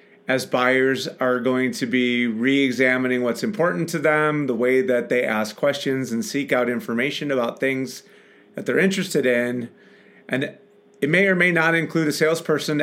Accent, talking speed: American, 170 wpm